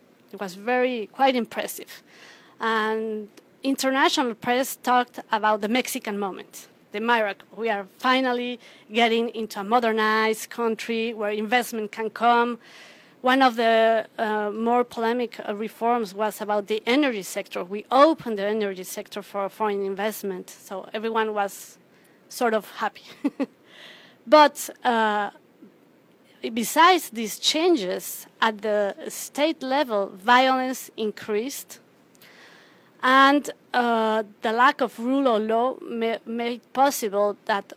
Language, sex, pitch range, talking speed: English, female, 215-250 Hz, 120 wpm